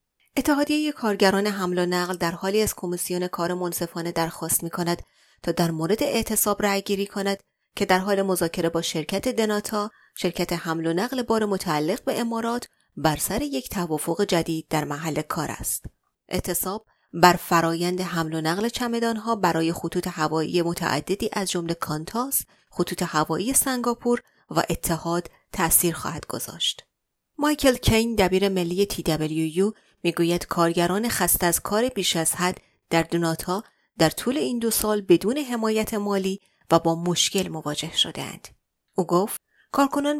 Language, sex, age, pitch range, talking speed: Persian, female, 30-49, 170-215 Hz, 145 wpm